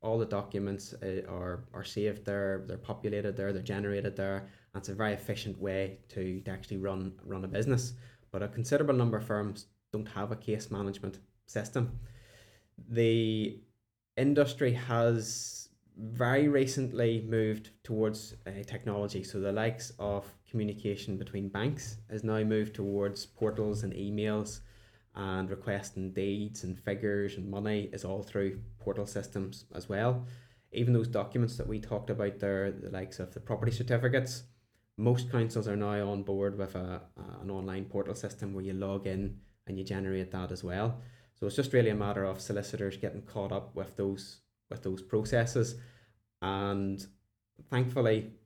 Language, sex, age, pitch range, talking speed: English, male, 20-39, 100-115 Hz, 155 wpm